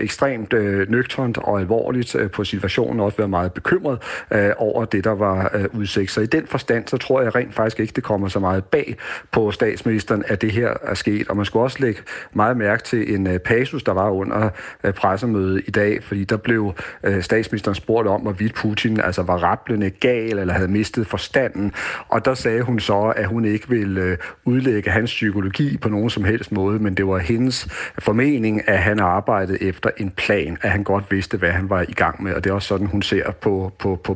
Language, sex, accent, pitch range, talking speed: Danish, male, native, 100-115 Hz, 220 wpm